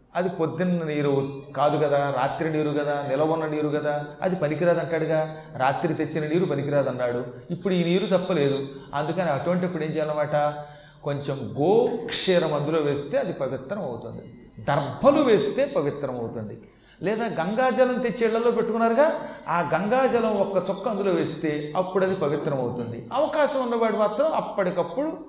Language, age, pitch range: Telugu, 30-49, 150-210 Hz